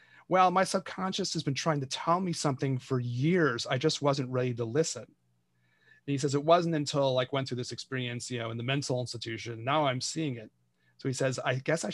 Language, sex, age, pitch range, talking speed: English, male, 30-49, 120-150 Hz, 225 wpm